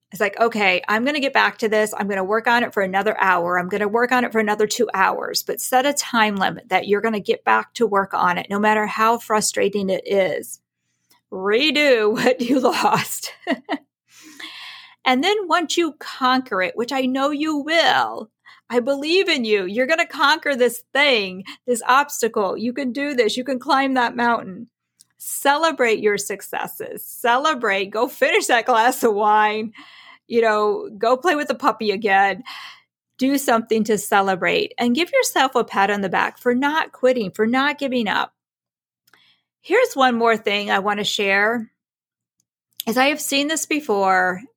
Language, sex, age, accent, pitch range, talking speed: English, female, 40-59, American, 205-270 Hz, 185 wpm